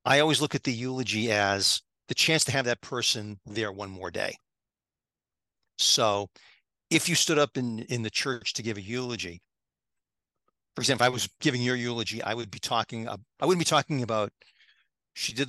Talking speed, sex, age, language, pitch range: 195 wpm, male, 40-59, English, 110-140 Hz